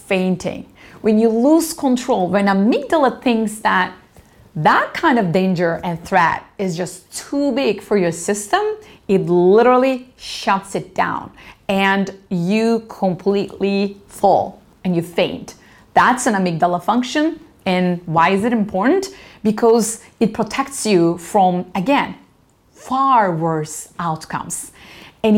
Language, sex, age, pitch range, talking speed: English, female, 30-49, 185-240 Hz, 125 wpm